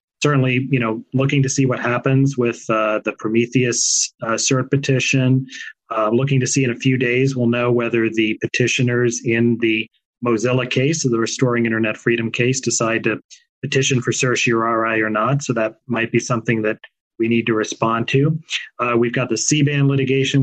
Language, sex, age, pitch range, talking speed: English, male, 30-49, 115-135 Hz, 180 wpm